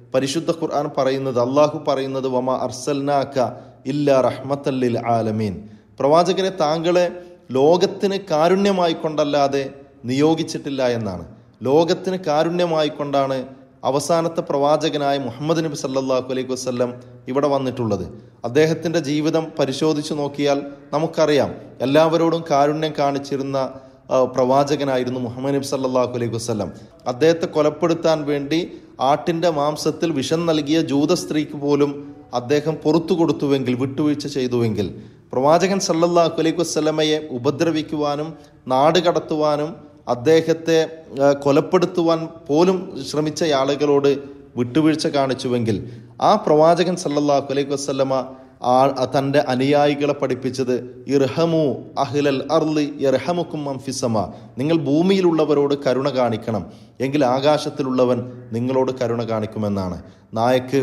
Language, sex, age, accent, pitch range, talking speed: Malayalam, male, 30-49, native, 125-155 Hz, 85 wpm